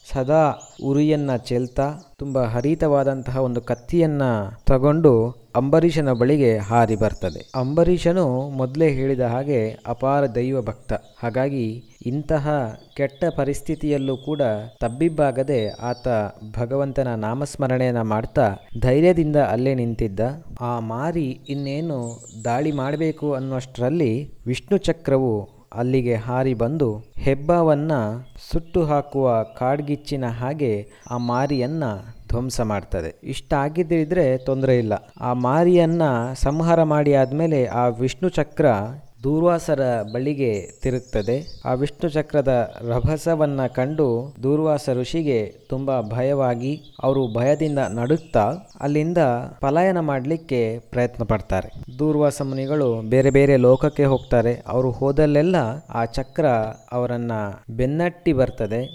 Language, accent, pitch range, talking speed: Kannada, native, 120-145 Hz, 100 wpm